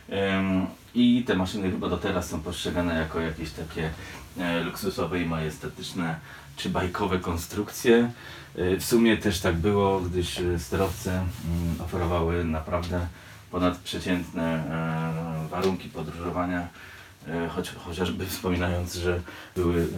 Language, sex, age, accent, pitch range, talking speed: Polish, male, 30-49, native, 85-100 Hz, 100 wpm